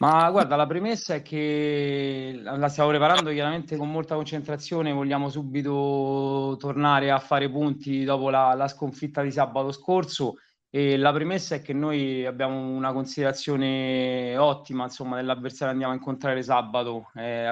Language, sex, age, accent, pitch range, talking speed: Italian, male, 20-39, native, 125-140 Hz, 150 wpm